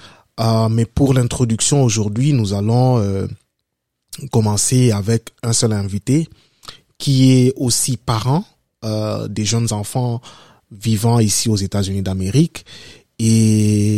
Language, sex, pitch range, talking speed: French, male, 110-125 Hz, 115 wpm